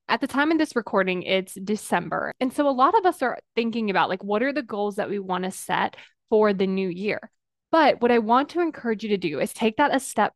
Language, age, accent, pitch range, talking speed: English, 20-39, American, 200-270 Hz, 260 wpm